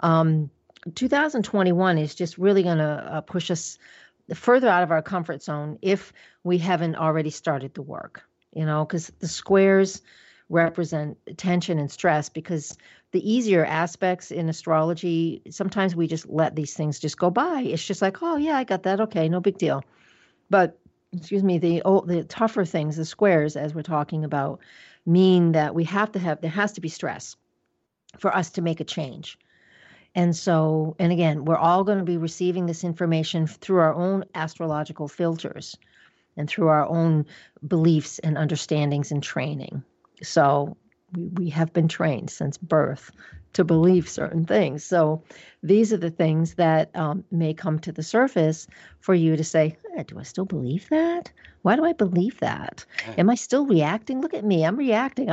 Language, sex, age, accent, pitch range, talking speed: English, female, 50-69, American, 160-195 Hz, 175 wpm